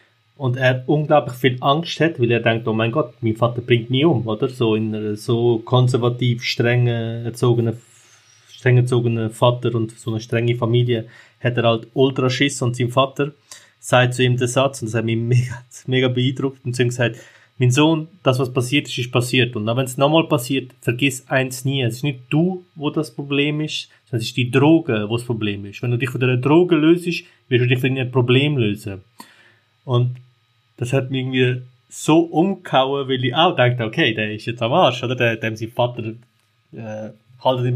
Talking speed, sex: 200 wpm, male